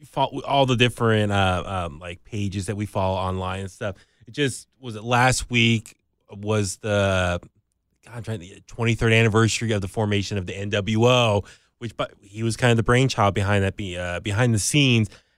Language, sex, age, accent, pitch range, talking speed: English, male, 20-39, American, 105-125 Hz, 185 wpm